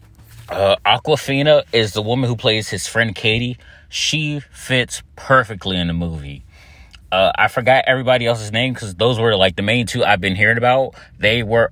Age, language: 30-49, English